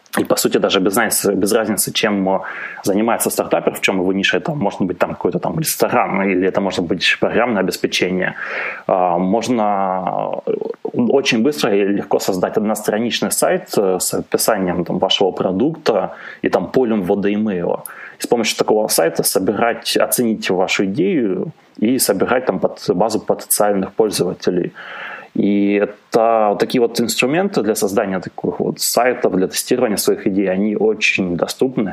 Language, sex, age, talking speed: Russian, male, 20-39, 145 wpm